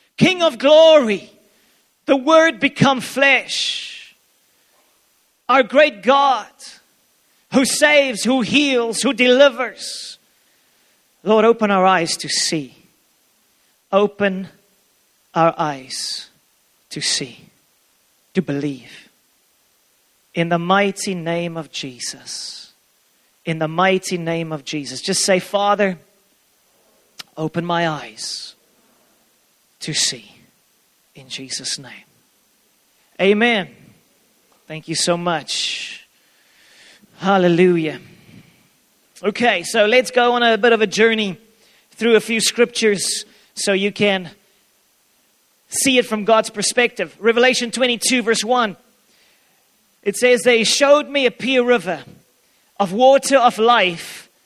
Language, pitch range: English, 185-250 Hz